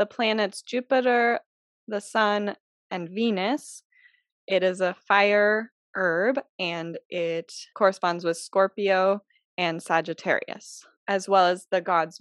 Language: English